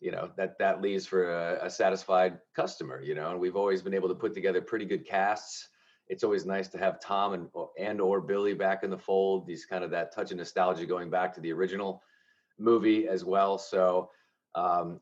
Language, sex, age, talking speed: English, male, 30-49, 215 wpm